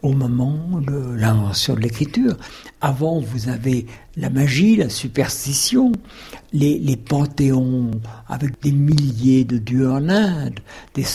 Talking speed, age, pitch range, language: 130 wpm, 60-79, 120-165 Hz, French